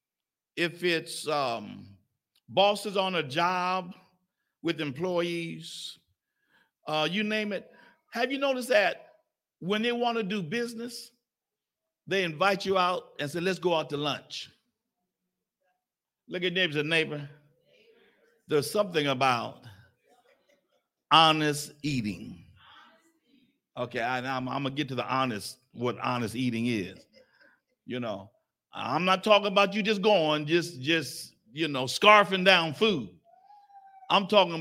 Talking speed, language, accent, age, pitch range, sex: 130 wpm, English, American, 60-79, 155-220 Hz, male